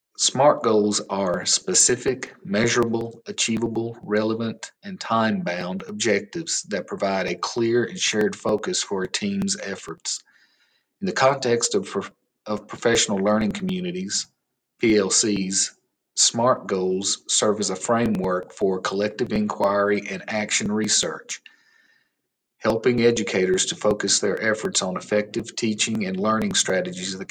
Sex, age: male, 40-59